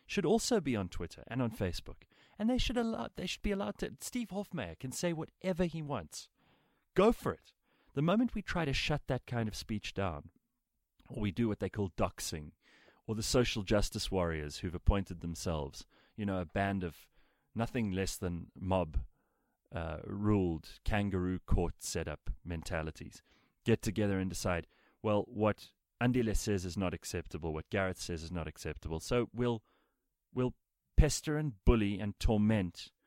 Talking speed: 170 wpm